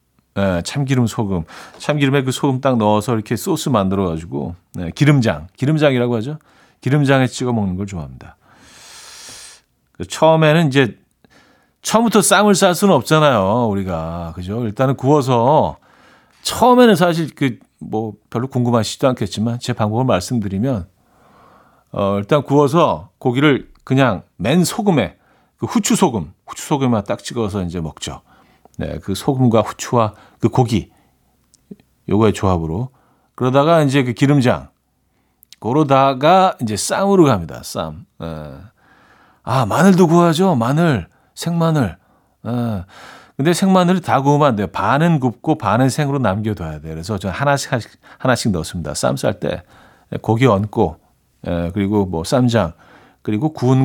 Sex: male